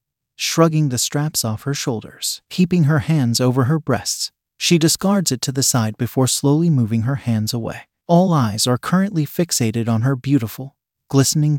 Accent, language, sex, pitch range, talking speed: American, English, male, 120-155 Hz, 170 wpm